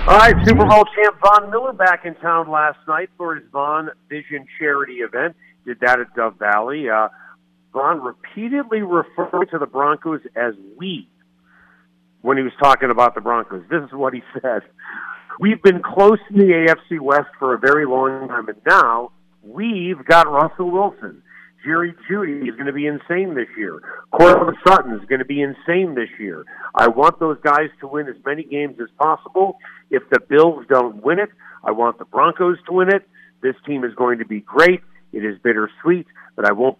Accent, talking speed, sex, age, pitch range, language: American, 190 wpm, male, 50-69, 120-175 Hz, English